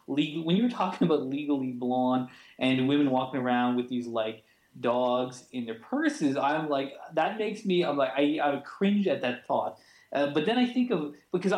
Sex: male